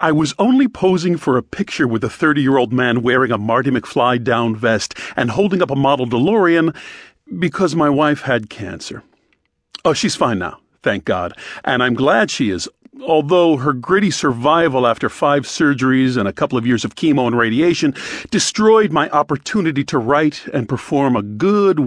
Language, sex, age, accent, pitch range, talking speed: English, male, 40-59, American, 120-170 Hz, 175 wpm